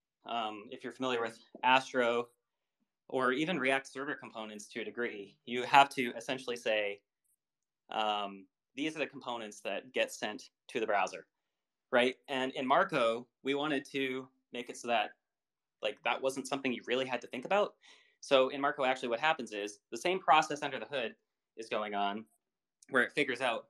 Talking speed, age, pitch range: 180 wpm, 20-39, 115-135 Hz